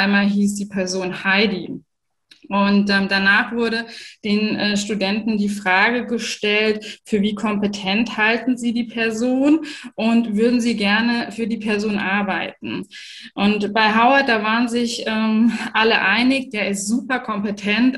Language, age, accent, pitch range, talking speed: German, 20-39, German, 205-235 Hz, 145 wpm